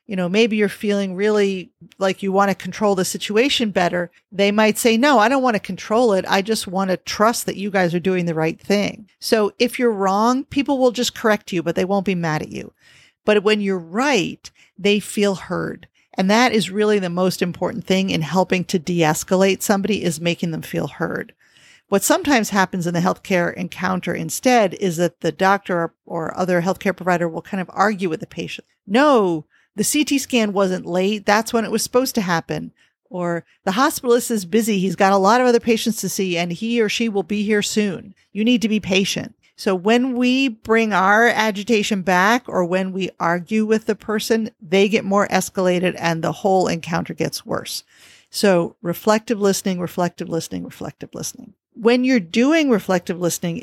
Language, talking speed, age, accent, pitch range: English, 200 wpm, 40-59, American, 180-225 Hz